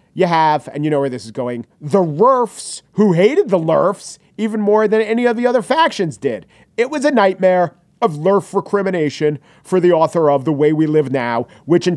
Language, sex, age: English, male, 40-59